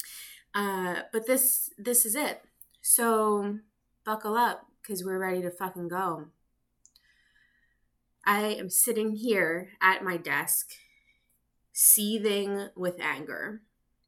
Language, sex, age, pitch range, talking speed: English, female, 20-39, 170-215 Hz, 105 wpm